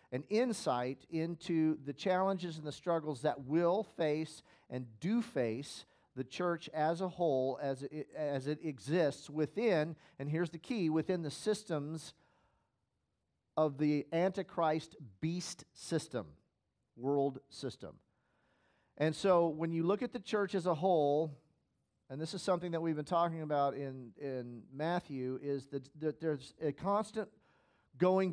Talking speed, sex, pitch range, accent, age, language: 145 wpm, male, 140-175 Hz, American, 40-59, English